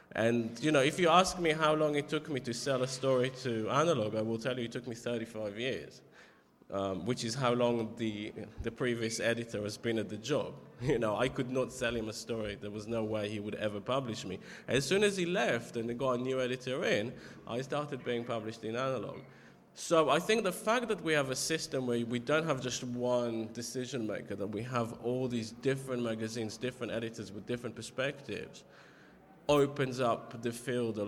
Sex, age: male, 20-39